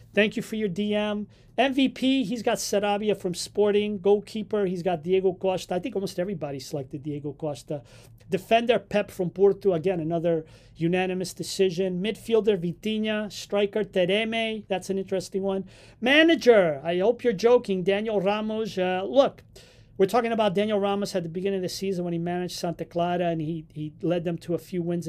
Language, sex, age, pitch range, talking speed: English, male, 40-59, 165-210 Hz, 175 wpm